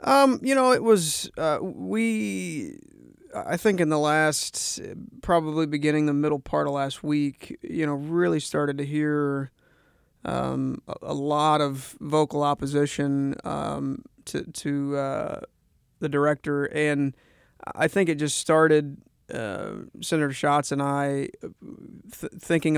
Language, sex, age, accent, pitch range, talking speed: English, male, 30-49, American, 140-155 Hz, 135 wpm